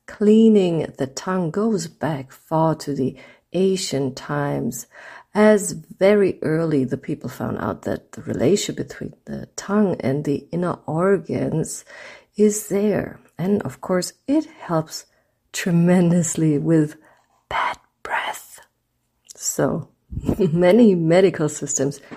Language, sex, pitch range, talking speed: English, female, 155-205 Hz, 115 wpm